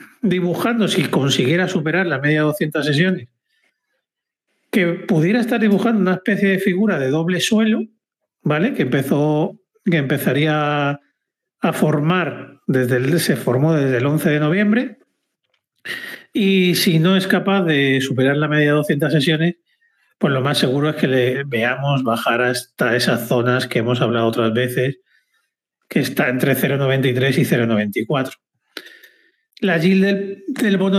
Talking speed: 145 wpm